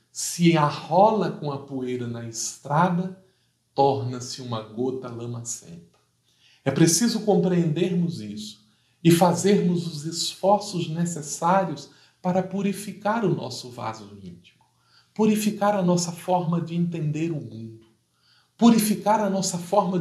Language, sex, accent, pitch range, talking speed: Portuguese, male, Brazilian, 115-175 Hz, 115 wpm